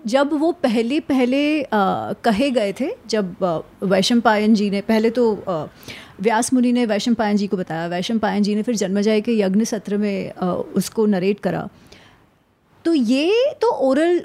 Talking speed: 165 wpm